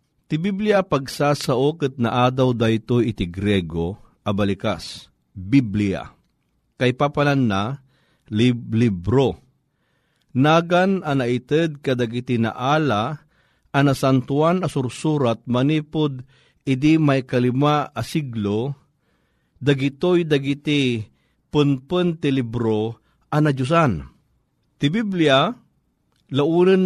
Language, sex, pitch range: Filipino, male, 125-155 Hz